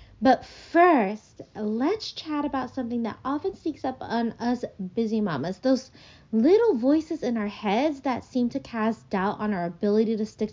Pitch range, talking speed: 205-275 Hz, 170 wpm